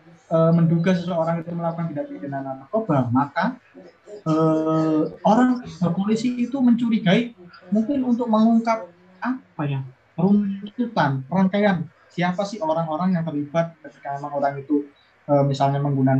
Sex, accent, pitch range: male, native, 145-190 Hz